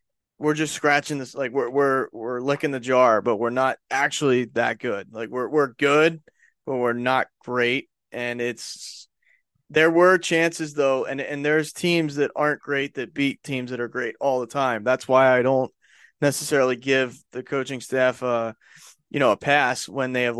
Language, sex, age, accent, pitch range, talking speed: English, male, 20-39, American, 125-150 Hz, 190 wpm